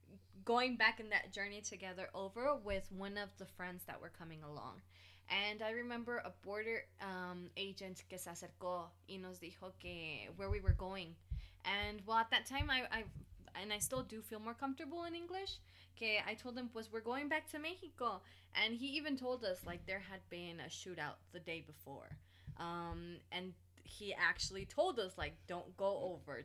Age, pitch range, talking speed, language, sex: 20-39, 175-250 Hz, 195 wpm, English, female